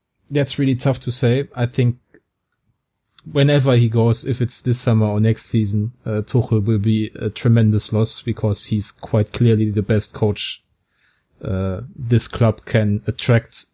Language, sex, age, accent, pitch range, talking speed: English, male, 30-49, German, 105-120 Hz, 155 wpm